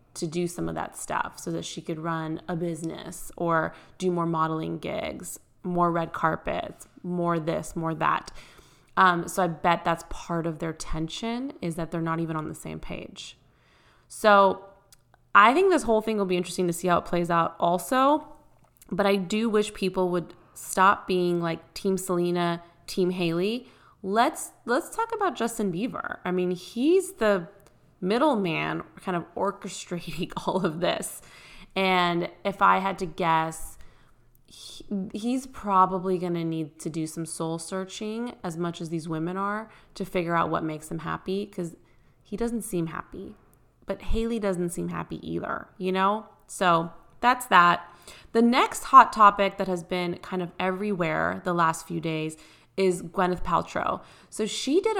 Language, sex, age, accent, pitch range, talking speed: English, female, 20-39, American, 170-200 Hz, 165 wpm